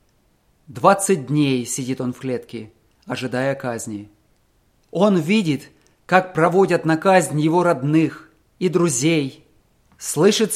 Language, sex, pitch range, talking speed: English, male, 130-185 Hz, 110 wpm